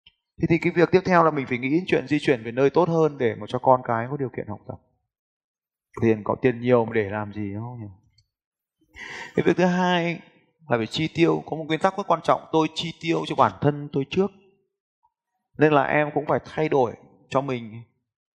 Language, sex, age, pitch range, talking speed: Vietnamese, male, 20-39, 125-165 Hz, 225 wpm